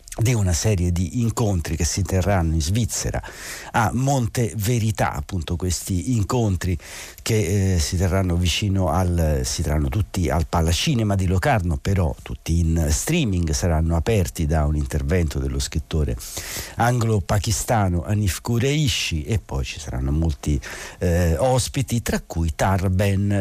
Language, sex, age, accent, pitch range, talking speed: Italian, male, 60-79, native, 80-105 Hz, 135 wpm